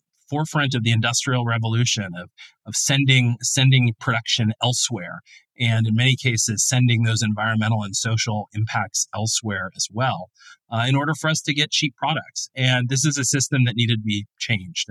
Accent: American